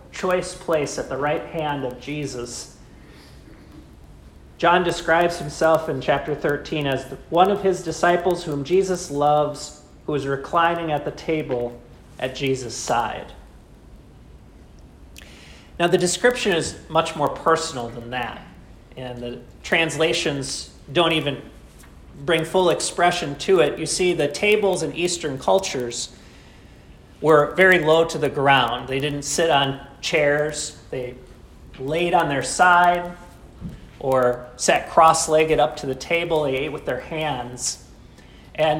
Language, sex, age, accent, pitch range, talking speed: English, male, 40-59, American, 130-165 Hz, 135 wpm